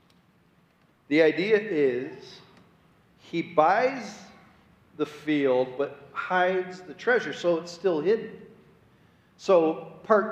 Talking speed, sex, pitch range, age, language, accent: 100 wpm, male, 150-210 Hz, 40-59, English, American